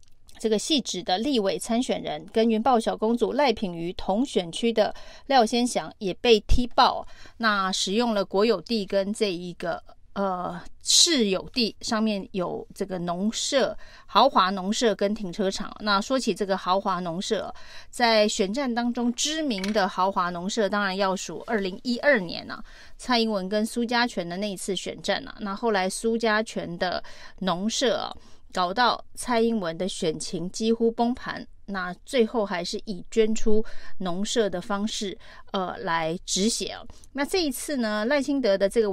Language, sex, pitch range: Chinese, female, 190-230 Hz